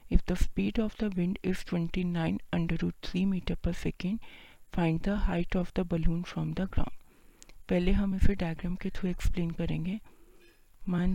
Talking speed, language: 145 wpm, Hindi